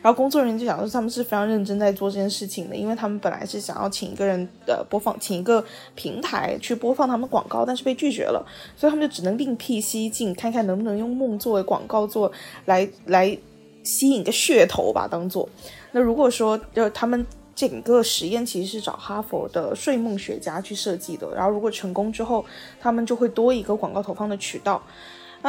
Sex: female